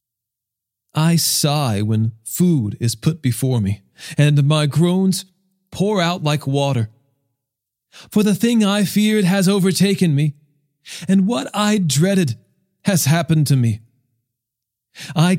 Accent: American